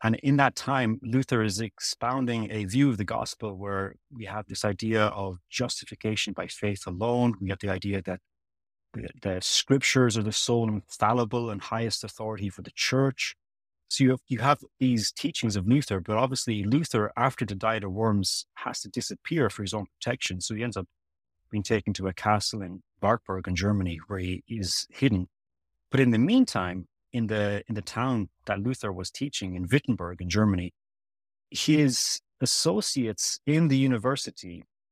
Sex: male